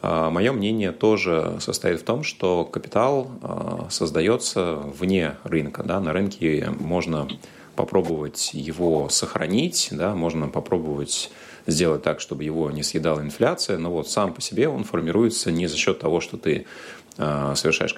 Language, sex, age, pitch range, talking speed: Russian, male, 30-49, 75-90 Hz, 135 wpm